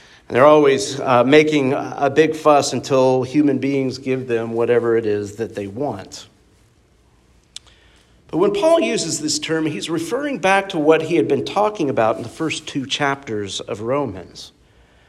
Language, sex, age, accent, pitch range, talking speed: English, male, 50-69, American, 130-165 Hz, 165 wpm